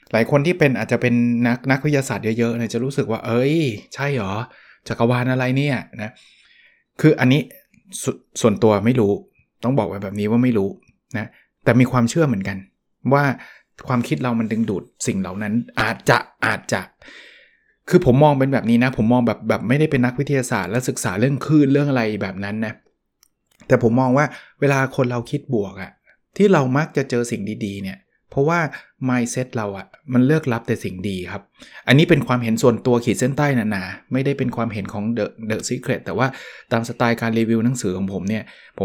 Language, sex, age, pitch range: Thai, male, 20-39, 110-135 Hz